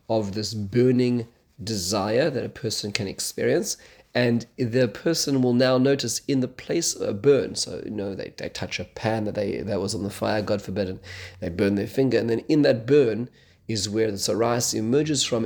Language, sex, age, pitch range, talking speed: English, male, 30-49, 100-120 Hz, 210 wpm